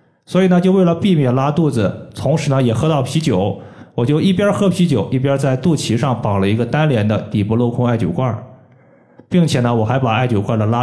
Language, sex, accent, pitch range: Chinese, male, native, 110-145 Hz